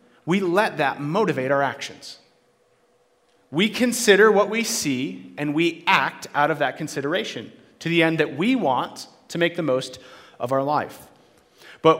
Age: 30-49